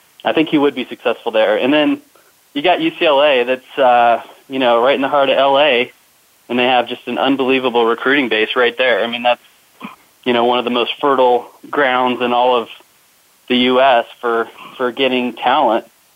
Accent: American